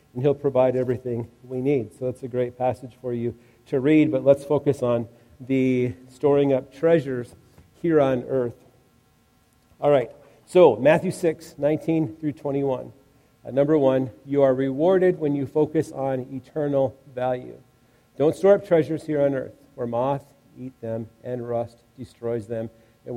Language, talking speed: English, 160 wpm